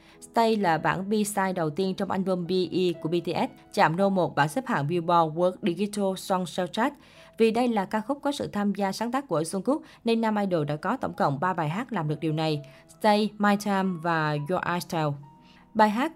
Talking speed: 210 wpm